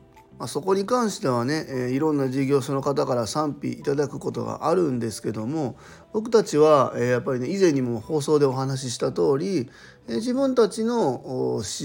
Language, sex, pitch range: Japanese, male, 120-150 Hz